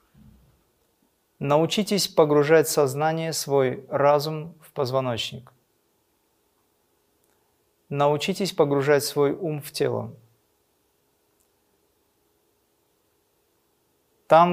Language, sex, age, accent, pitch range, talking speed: Russian, male, 30-49, native, 135-155 Hz, 60 wpm